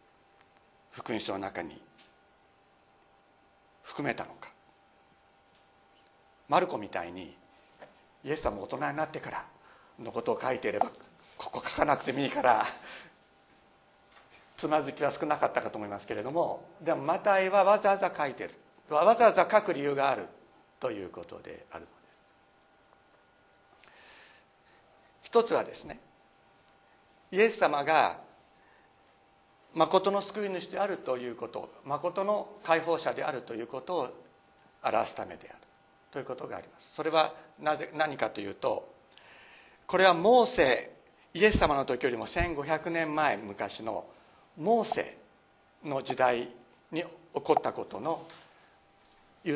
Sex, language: male, Japanese